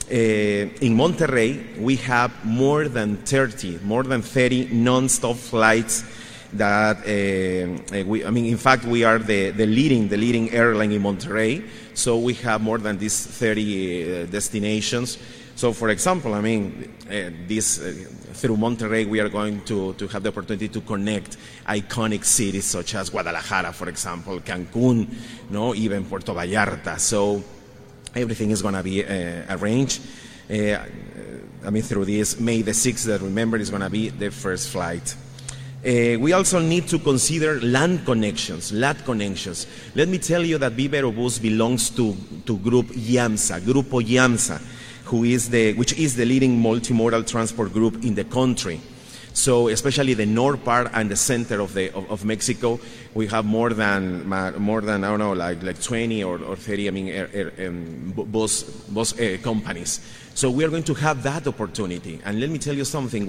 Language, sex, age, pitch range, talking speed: English, male, 30-49, 105-125 Hz, 170 wpm